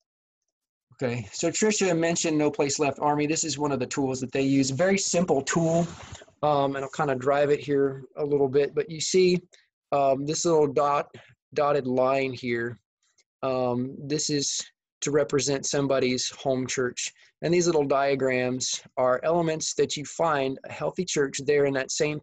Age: 20-39